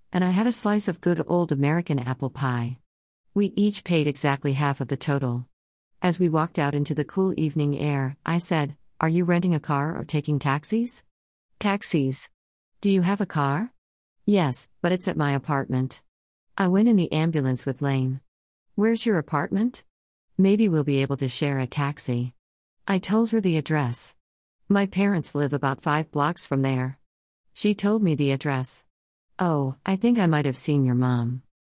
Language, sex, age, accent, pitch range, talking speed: English, female, 40-59, American, 135-180 Hz, 180 wpm